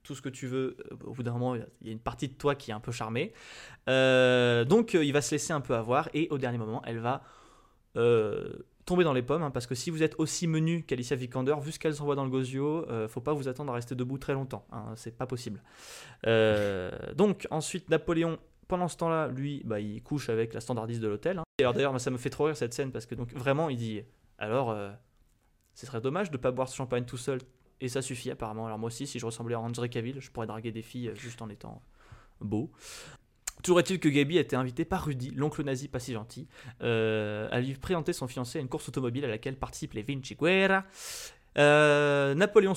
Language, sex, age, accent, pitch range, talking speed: French, male, 20-39, French, 120-155 Hz, 245 wpm